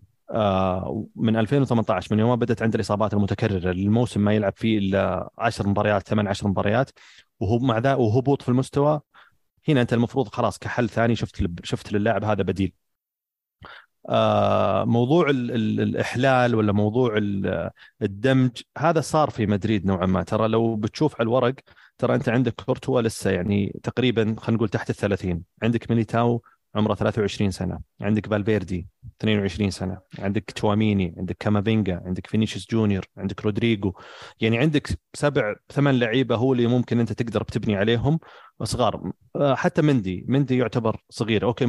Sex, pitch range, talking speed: male, 100-125 Hz, 145 wpm